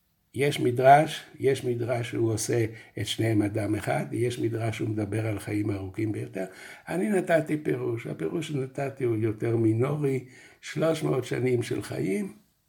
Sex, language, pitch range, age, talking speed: male, Hebrew, 110-145 Hz, 60-79, 140 wpm